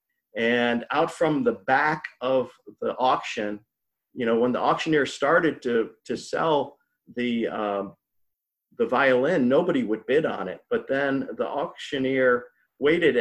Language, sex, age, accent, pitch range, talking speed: English, male, 50-69, American, 120-155 Hz, 140 wpm